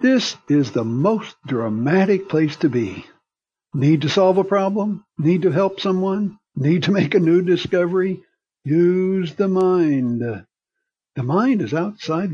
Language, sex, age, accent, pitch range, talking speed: English, male, 60-79, American, 135-190 Hz, 145 wpm